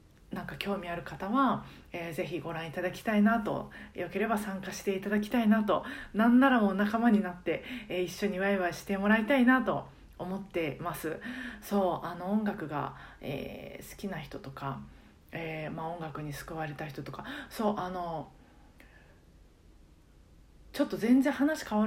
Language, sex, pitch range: Japanese, female, 165-220 Hz